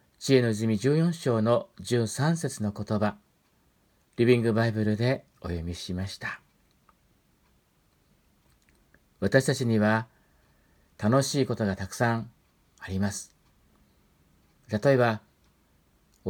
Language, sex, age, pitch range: Japanese, male, 50-69, 95-135 Hz